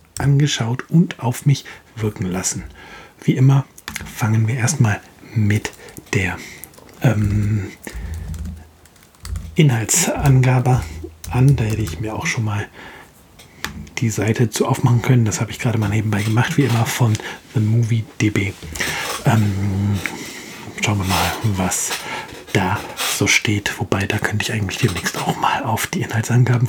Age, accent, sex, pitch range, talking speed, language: 50-69, German, male, 105-130 Hz, 135 wpm, German